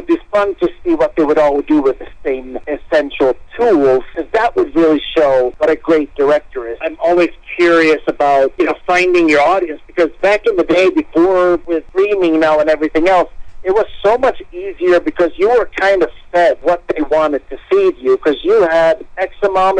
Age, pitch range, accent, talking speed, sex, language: 50-69, 150-200 Hz, American, 190 wpm, male, English